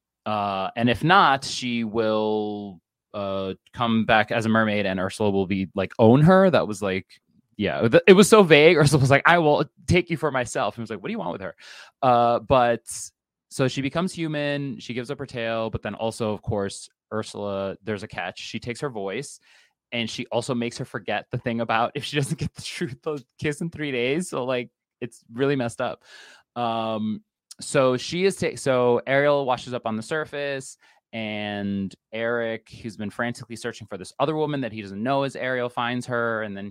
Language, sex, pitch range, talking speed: English, male, 110-150 Hz, 210 wpm